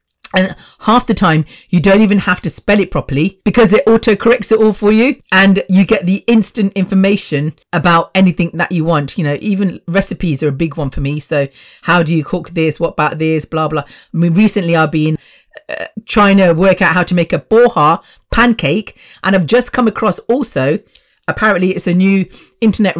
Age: 40-59